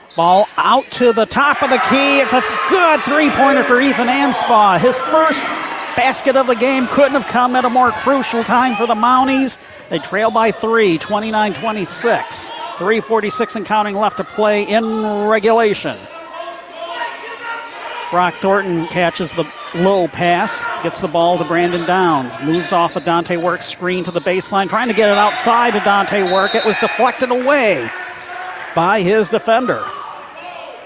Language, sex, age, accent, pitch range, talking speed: English, male, 40-59, American, 180-260 Hz, 160 wpm